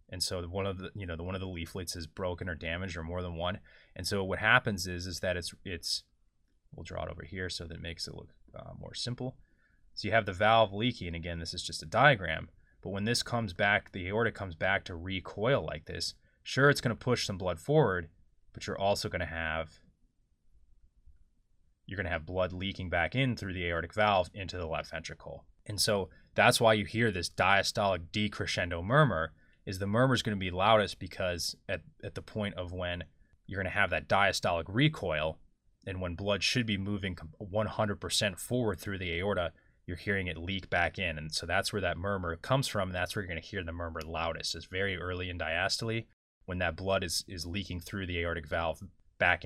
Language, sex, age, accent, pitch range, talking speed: English, male, 20-39, American, 85-105 Hz, 220 wpm